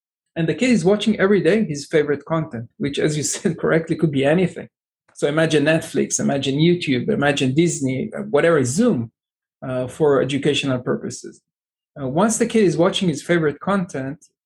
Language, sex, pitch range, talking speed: English, male, 145-185 Hz, 165 wpm